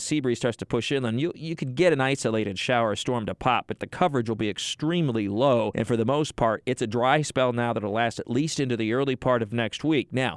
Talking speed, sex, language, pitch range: 265 wpm, male, English, 115-145 Hz